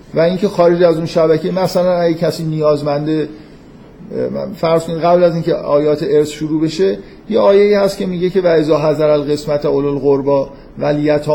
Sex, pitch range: male, 145-175 Hz